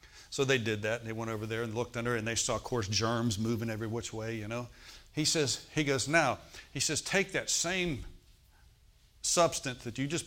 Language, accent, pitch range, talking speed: English, American, 110-145 Hz, 220 wpm